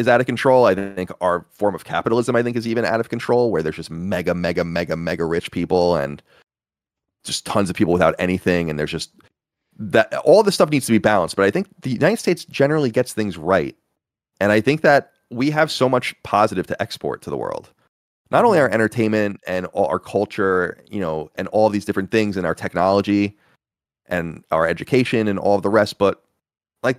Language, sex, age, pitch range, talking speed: Russian, male, 30-49, 85-115 Hz, 215 wpm